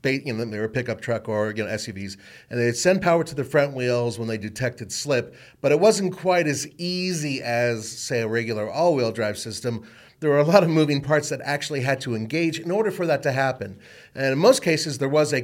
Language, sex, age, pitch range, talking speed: English, male, 40-59, 120-160 Hz, 235 wpm